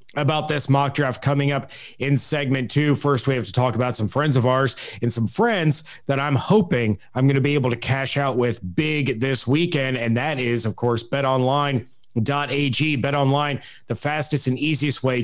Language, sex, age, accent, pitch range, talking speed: English, male, 30-49, American, 125-145 Hz, 195 wpm